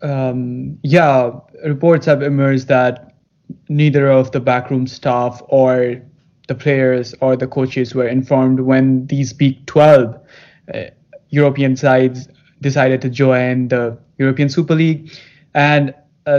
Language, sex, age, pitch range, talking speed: English, male, 20-39, 130-155 Hz, 125 wpm